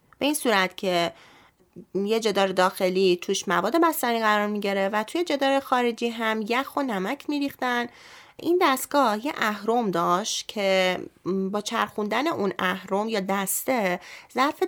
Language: Persian